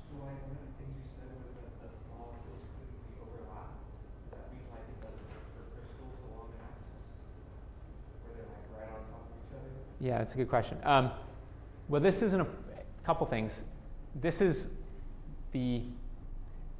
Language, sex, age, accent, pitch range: English, male, 30-49, American, 105-125 Hz